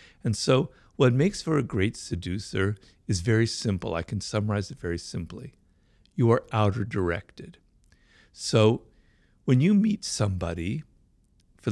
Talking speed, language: 140 wpm, English